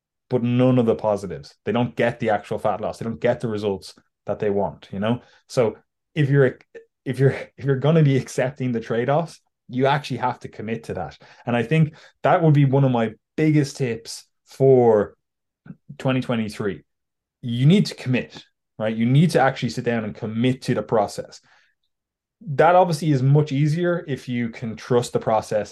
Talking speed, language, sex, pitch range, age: 190 wpm, English, male, 110-135 Hz, 20-39